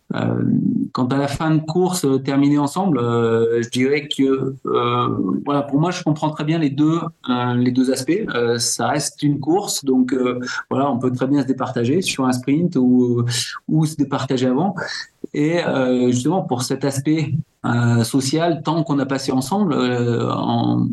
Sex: male